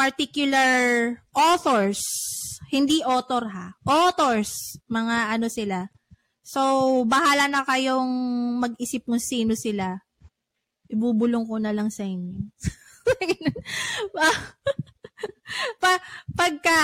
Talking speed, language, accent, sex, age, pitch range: 85 wpm, Filipino, native, female, 20-39, 230-305 Hz